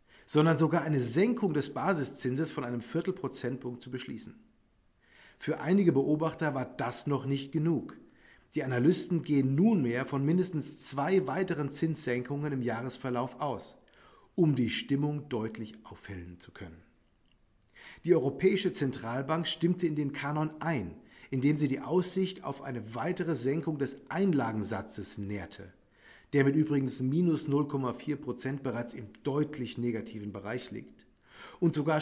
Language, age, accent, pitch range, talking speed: German, 40-59, German, 120-160 Hz, 135 wpm